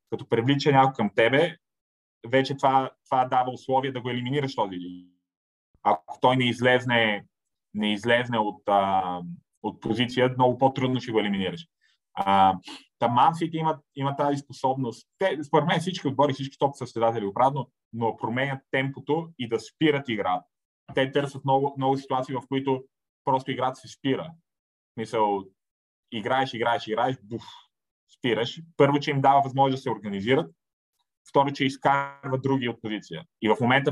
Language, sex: Bulgarian, male